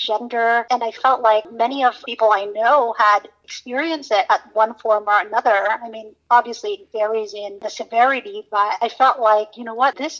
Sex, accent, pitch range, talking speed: female, American, 215-240 Hz, 200 wpm